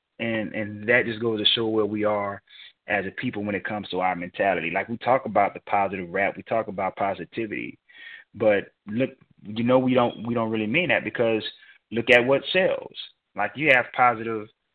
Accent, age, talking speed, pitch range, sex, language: American, 20-39, 205 wpm, 105-125 Hz, male, English